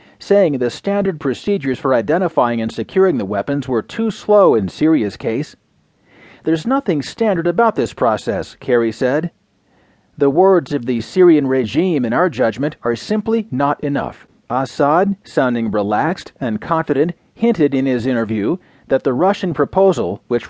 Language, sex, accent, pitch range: English, male, American, 125-185 Hz